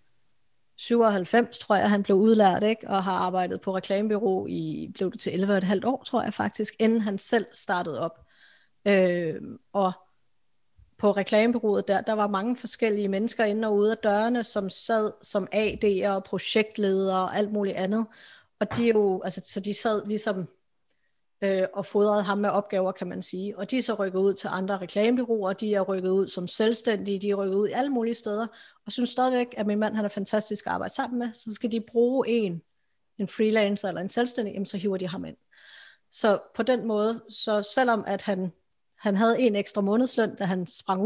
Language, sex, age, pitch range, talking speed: Danish, female, 30-49, 195-225 Hz, 195 wpm